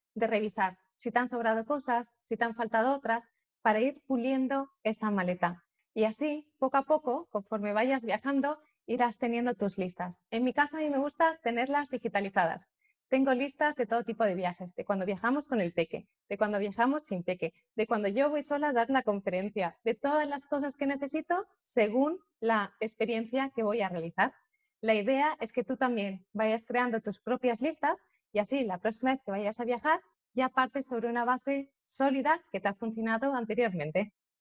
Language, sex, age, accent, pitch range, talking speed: Spanish, female, 20-39, Spanish, 210-270 Hz, 190 wpm